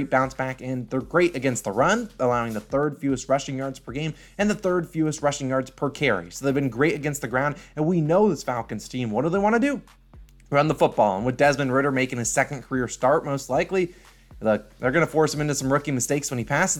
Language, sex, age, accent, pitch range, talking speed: English, male, 20-39, American, 125-170 Hz, 250 wpm